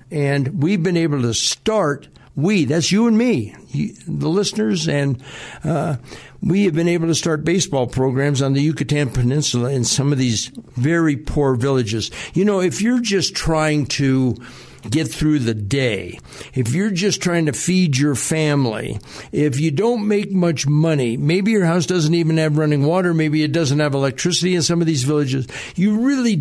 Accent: American